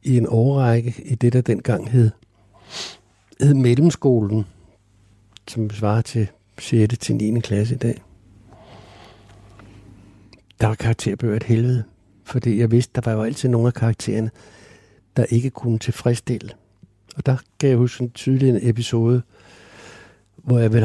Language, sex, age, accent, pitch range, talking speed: Danish, male, 60-79, native, 110-130 Hz, 140 wpm